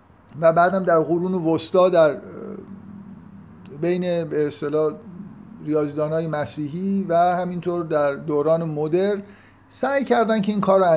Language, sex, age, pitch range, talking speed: Persian, male, 50-69, 155-205 Hz, 125 wpm